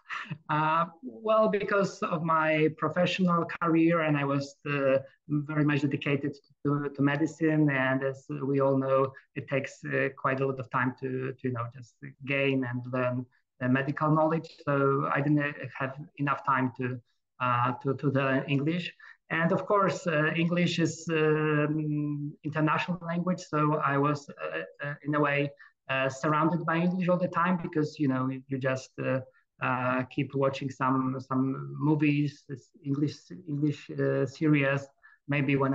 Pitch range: 135-155 Hz